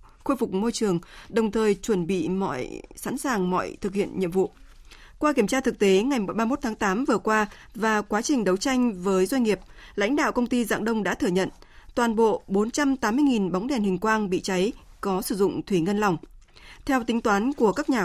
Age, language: 20-39, Vietnamese